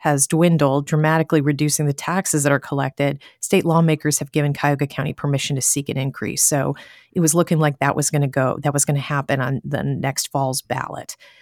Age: 30-49